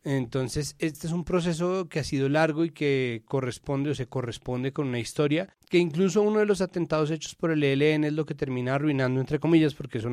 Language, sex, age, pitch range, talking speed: Spanish, male, 30-49, 130-155 Hz, 220 wpm